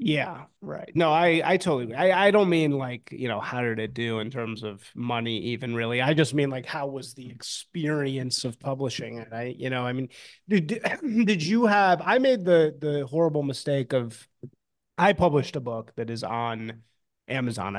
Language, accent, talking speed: English, American, 195 wpm